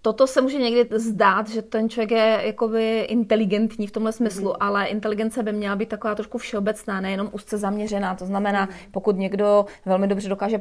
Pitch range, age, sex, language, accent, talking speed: 200-220 Hz, 30-49, female, Czech, native, 175 wpm